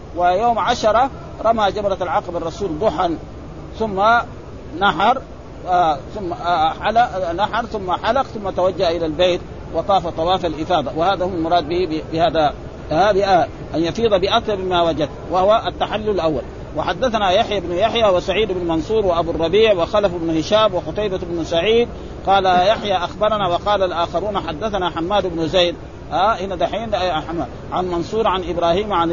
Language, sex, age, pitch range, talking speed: Arabic, male, 50-69, 175-215 Hz, 145 wpm